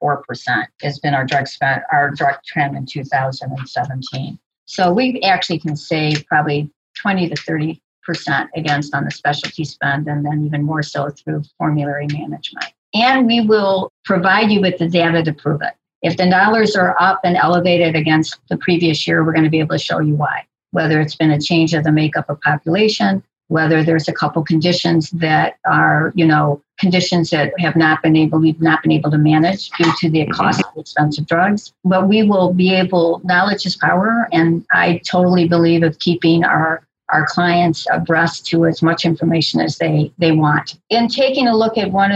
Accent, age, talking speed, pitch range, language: American, 50-69, 190 wpm, 150-180 Hz, English